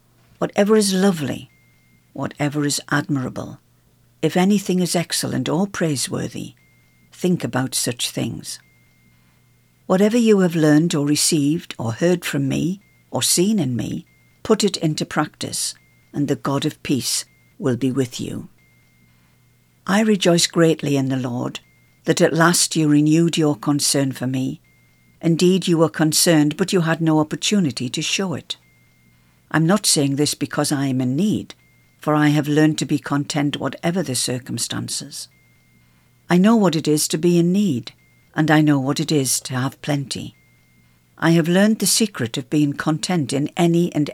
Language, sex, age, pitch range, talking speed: English, female, 60-79, 125-170 Hz, 160 wpm